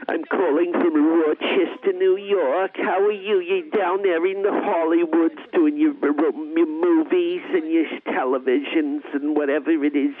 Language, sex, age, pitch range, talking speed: English, male, 50-69, 310-390 Hz, 155 wpm